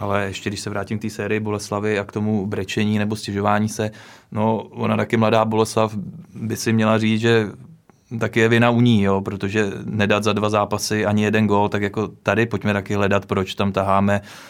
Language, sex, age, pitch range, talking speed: Czech, male, 20-39, 100-110 Hz, 205 wpm